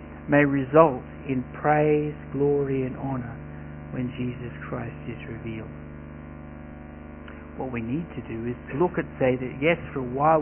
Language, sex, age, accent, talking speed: English, male, 60-79, Australian, 155 wpm